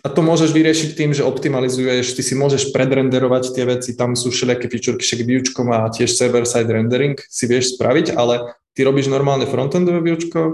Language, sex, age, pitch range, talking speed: Slovak, male, 20-39, 120-145 Hz, 180 wpm